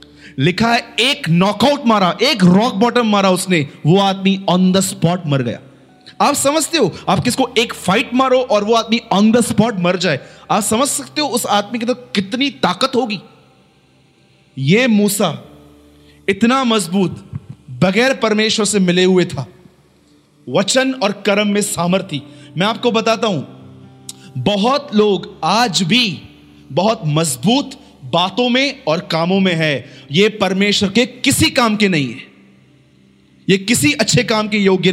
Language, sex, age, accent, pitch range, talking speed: Hindi, male, 30-49, native, 160-225 Hz, 155 wpm